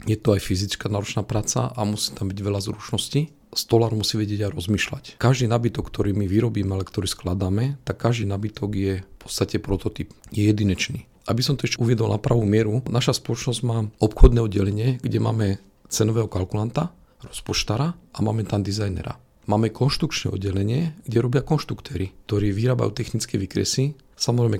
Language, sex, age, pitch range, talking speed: Slovak, male, 40-59, 100-120 Hz, 165 wpm